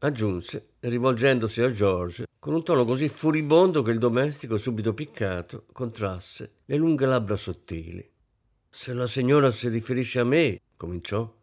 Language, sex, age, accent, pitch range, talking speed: Italian, male, 50-69, native, 110-170 Hz, 140 wpm